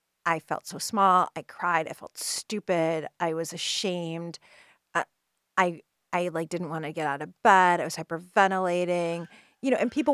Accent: American